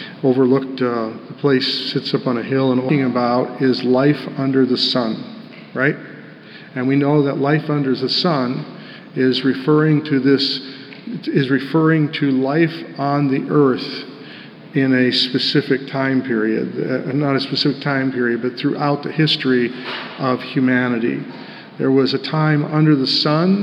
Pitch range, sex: 130-145 Hz, male